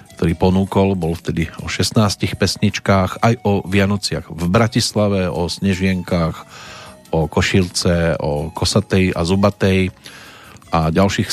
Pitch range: 90-115 Hz